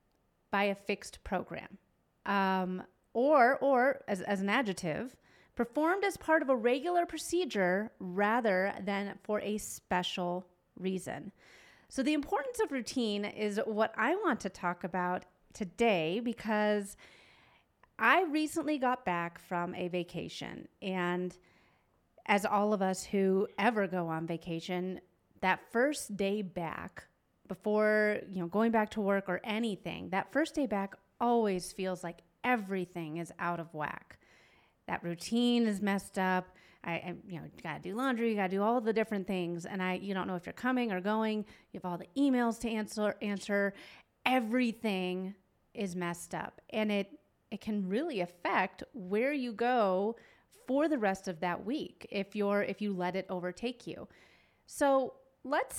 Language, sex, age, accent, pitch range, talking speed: English, female, 30-49, American, 185-235 Hz, 160 wpm